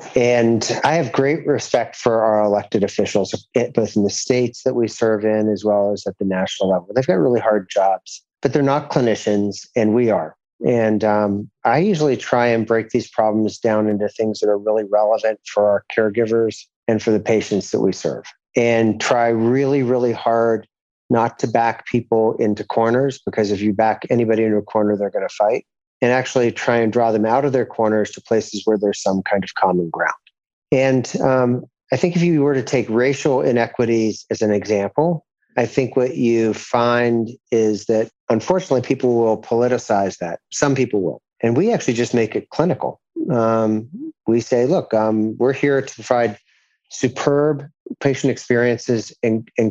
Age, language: 40-59, English